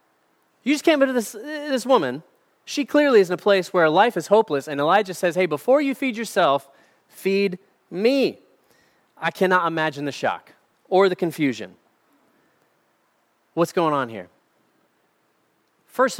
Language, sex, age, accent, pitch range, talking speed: English, male, 30-49, American, 135-200 Hz, 150 wpm